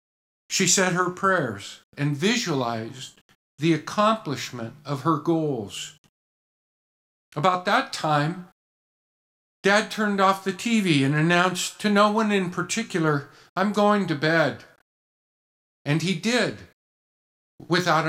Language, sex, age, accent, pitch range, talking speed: English, male, 50-69, American, 140-190 Hz, 115 wpm